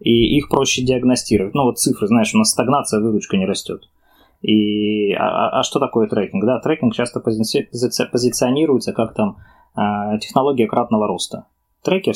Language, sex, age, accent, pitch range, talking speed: Russian, male, 20-39, native, 115-150 Hz, 170 wpm